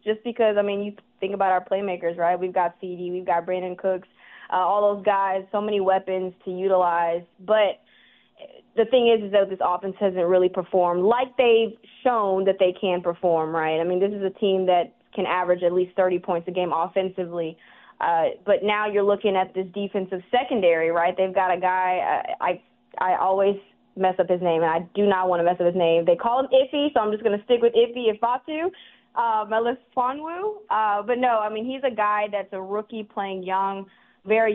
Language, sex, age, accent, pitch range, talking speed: English, female, 20-39, American, 180-220 Hz, 215 wpm